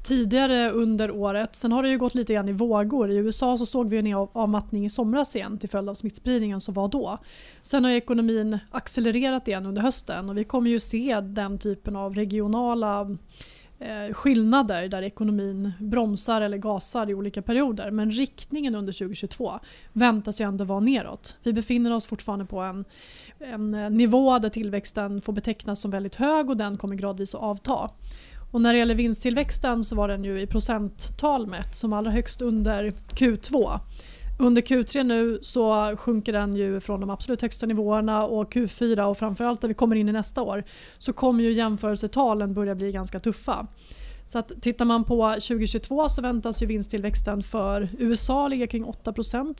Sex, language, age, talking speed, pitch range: female, Swedish, 20-39, 175 wpm, 205-240 Hz